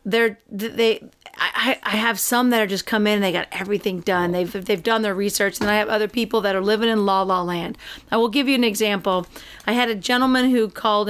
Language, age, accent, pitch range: English, 40-59, American, 200-240 Hz